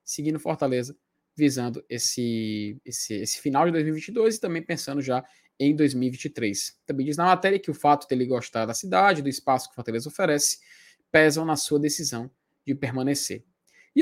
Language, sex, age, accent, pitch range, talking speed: Portuguese, male, 20-39, Brazilian, 135-175 Hz, 165 wpm